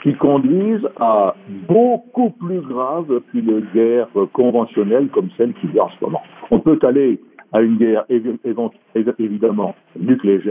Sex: male